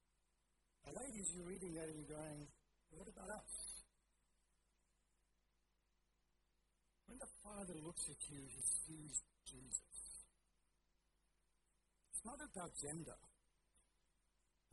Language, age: English, 60-79